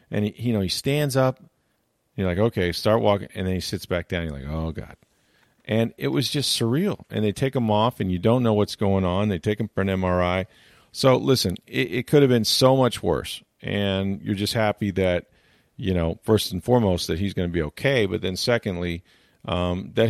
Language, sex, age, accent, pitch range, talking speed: English, male, 40-59, American, 95-115 Hz, 230 wpm